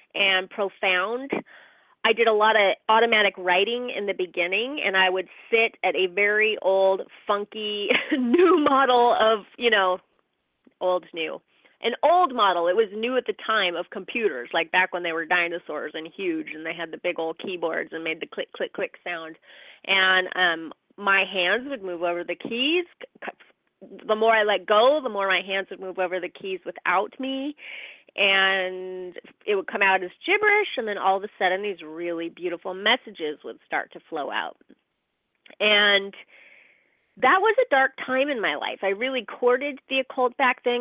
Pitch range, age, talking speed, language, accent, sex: 185-245 Hz, 30-49, 180 wpm, English, American, female